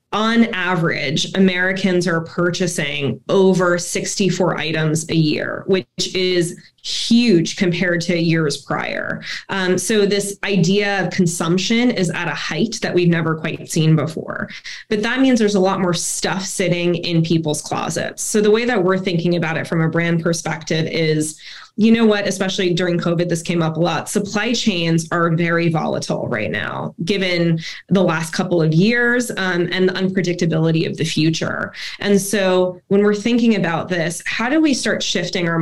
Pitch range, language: 170-200 Hz, English